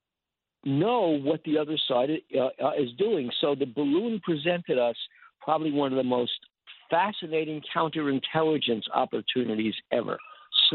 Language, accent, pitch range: English, American, 145-200 Hz